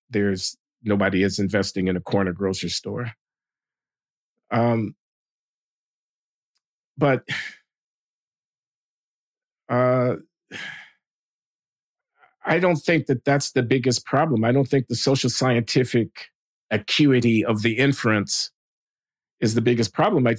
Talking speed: 105 wpm